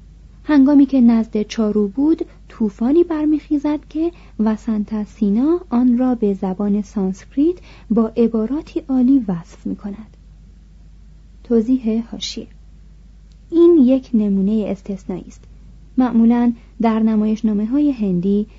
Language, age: Persian, 30-49